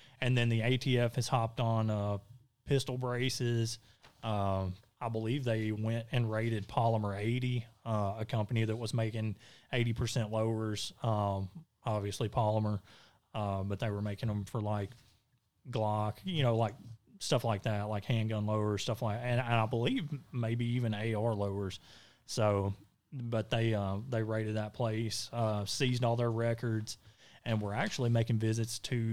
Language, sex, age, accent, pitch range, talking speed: English, male, 30-49, American, 105-125 Hz, 160 wpm